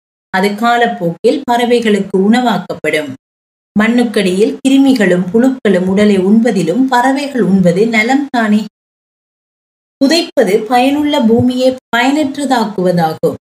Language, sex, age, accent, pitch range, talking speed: Tamil, female, 30-49, native, 185-245 Hz, 75 wpm